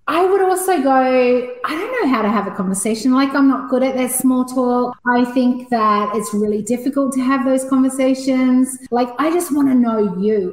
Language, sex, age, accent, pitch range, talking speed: English, female, 30-49, Australian, 215-275 Hz, 210 wpm